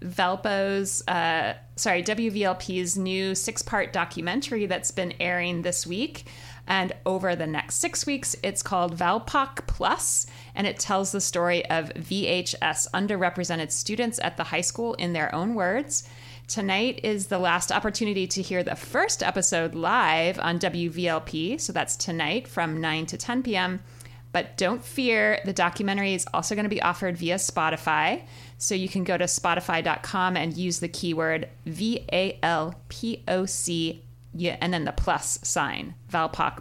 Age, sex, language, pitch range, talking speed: 30-49, female, English, 160-190 Hz, 145 wpm